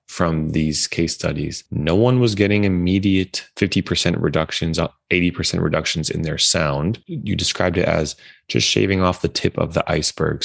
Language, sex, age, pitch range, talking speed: English, male, 20-39, 80-90 Hz, 160 wpm